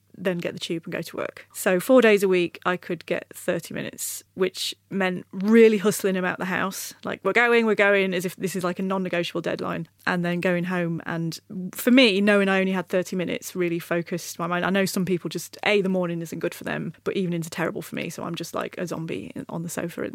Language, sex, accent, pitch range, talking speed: English, female, British, 175-205 Hz, 245 wpm